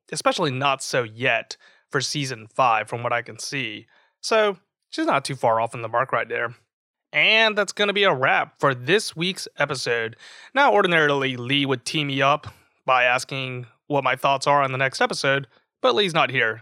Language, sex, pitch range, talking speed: English, male, 125-165 Hz, 200 wpm